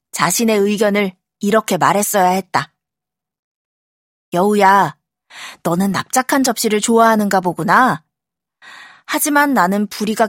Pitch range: 180-235 Hz